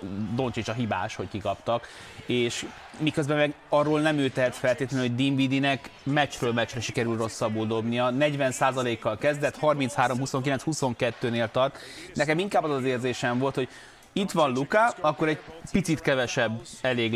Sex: male